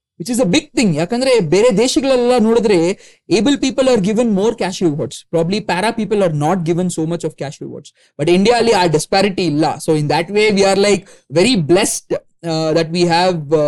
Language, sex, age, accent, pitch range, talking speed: Kannada, male, 20-39, native, 165-215 Hz, 200 wpm